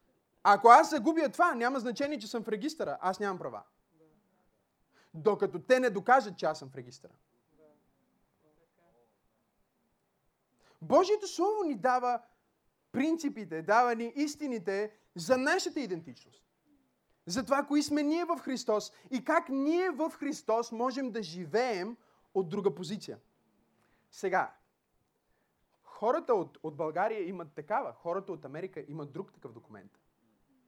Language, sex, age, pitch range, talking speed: Bulgarian, male, 30-49, 170-260 Hz, 125 wpm